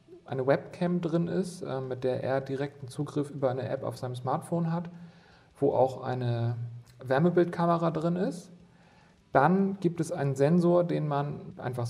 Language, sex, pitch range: German, male, 125-160 Hz